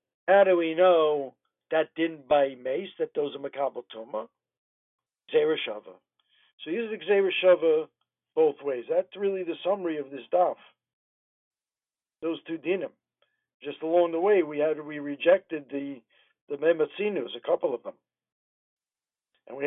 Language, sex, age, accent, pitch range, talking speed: English, male, 60-79, American, 150-195 Hz, 140 wpm